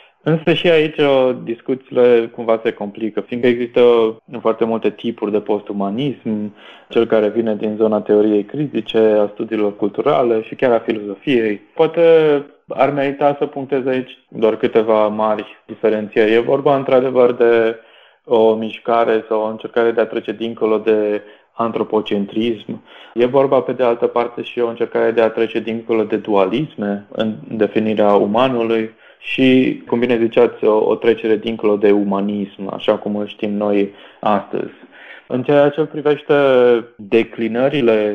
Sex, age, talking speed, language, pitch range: male, 20-39, 145 wpm, Romanian, 110-125 Hz